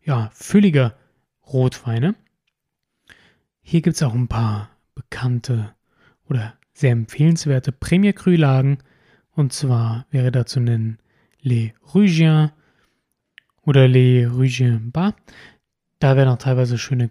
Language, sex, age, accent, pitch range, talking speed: German, male, 30-49, German, 125-155 Hz, 110 wpm